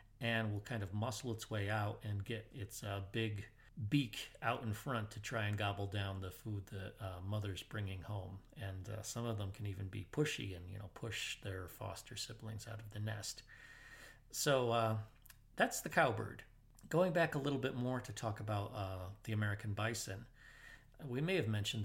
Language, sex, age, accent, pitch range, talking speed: English, male, 40-59, American, 100-120 Hz, 195 wpm